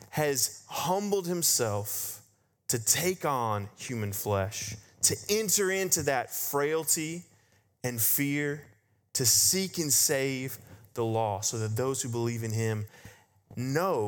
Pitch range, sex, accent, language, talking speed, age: 115-155 Hz, male, American, English, 125 wpm, 30-49